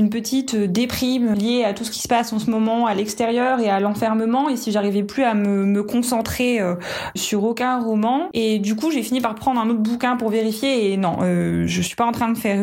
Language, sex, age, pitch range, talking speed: French, female, 20-39, 210-255 Hz, 245 wpm